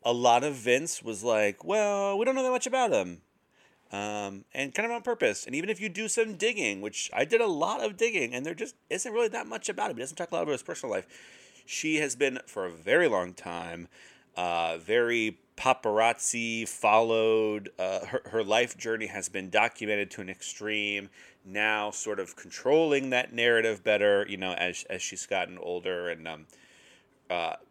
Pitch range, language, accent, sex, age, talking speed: 105-135 Hz, English, American, male, 30-49, 200 wpm